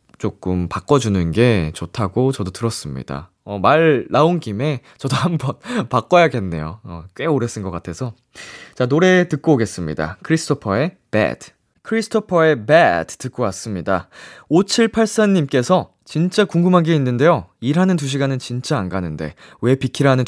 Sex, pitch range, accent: male, 100-165 Hz, native